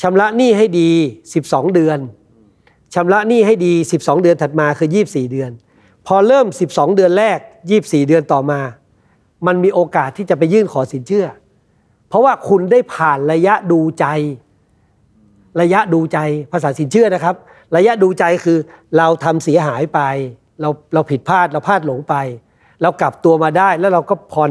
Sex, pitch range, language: male, 135-185 Hz, Thai